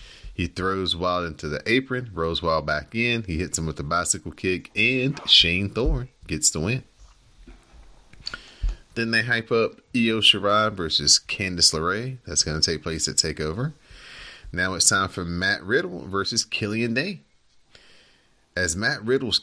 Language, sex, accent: English, male, American